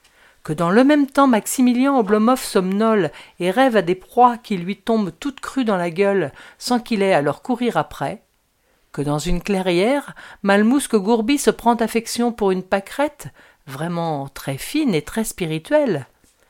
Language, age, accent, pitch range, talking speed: French, 50-69, French, 175-240 Hz, 165 wpm